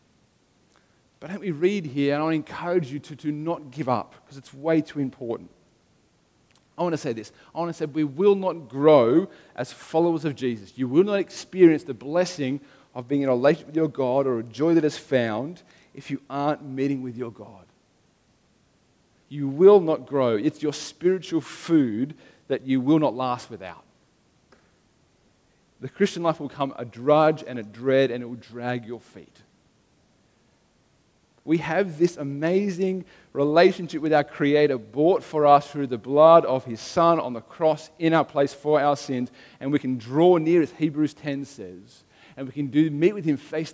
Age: 40-59